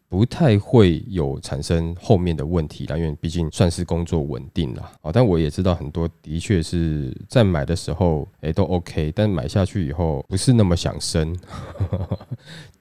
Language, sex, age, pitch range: Chinese, male, 20-39, 80-110 Hz